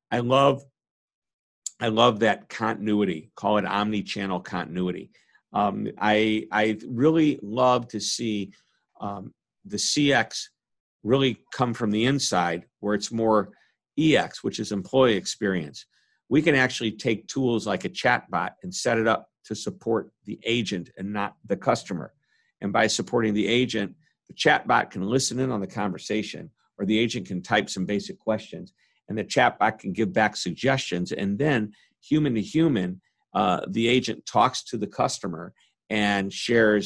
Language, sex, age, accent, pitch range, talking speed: English, male, 50-69, American, 100-120 Hz, 155 wpm